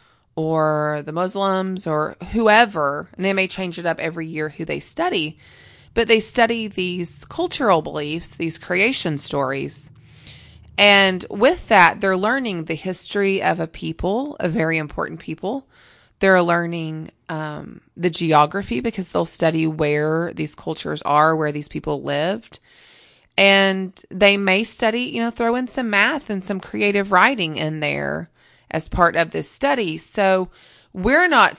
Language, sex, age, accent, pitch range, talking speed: English, female, 20-39, American, 160-205 Hz, 150 wpm